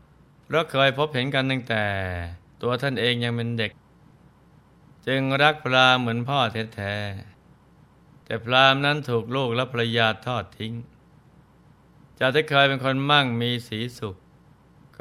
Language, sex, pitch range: Thai, male, 110-130 Hz